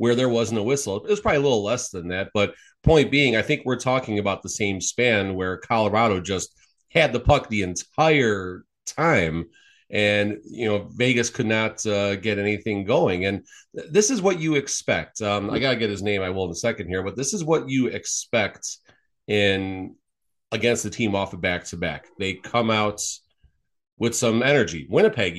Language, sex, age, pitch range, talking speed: English, male, 30-49, 95-125 Hz, 200 wpm